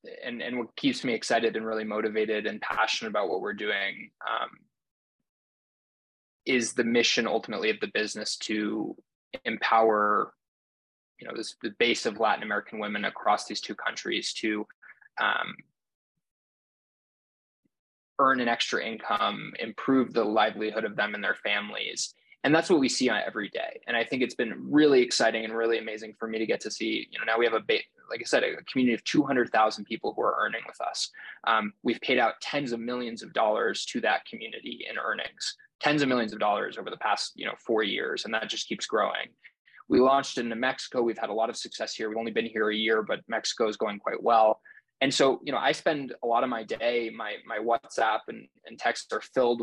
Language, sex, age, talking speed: English, male, 20-39, 205 wpm